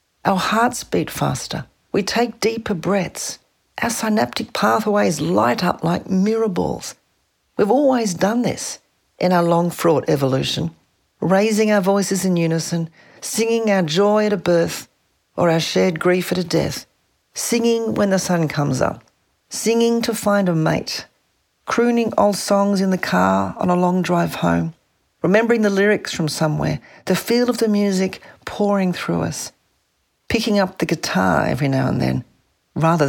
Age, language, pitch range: 50-69, English, 155-210 Hz